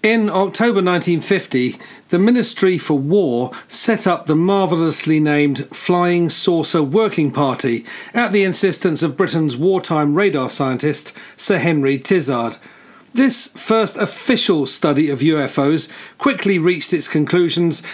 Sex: male